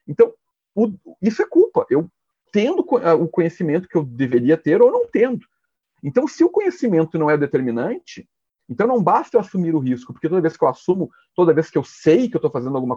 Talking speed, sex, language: 210 wpm, male, Portuguese